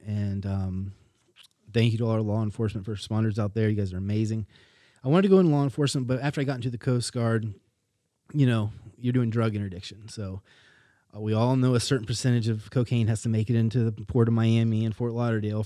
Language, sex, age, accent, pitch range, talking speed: English, male, 30-49, American, 105-125 Hz, 220 wpm